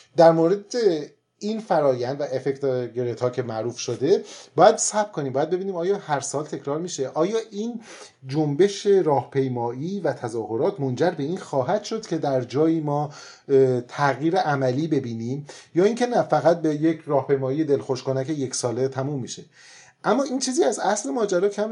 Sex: male